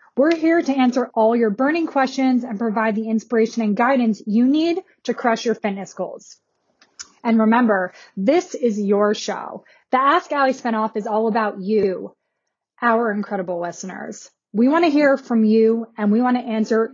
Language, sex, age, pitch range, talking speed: English, female, 20-39, 215-270 Hz, 175 wpm